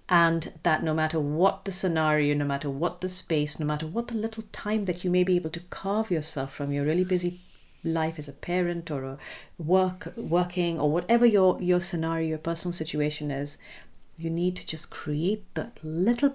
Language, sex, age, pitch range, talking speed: English, female, 50-69, 150-190 Hz, 200 wpm